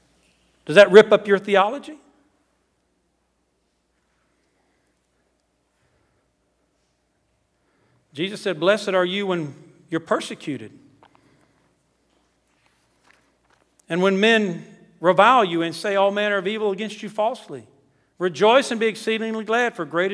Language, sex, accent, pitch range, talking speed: English, male, American, 140-195 Hz, 105 wpm